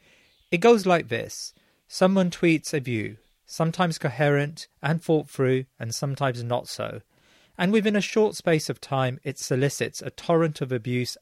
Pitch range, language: 120-155 Hz, English